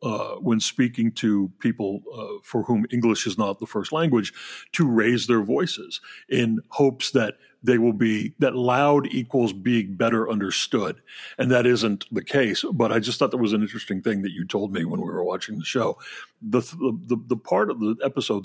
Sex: male